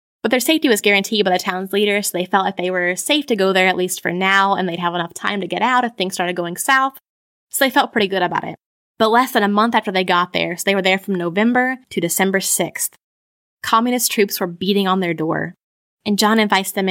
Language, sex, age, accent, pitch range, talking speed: English, female, 20-39, American, 180-205 Hz, 255 wpm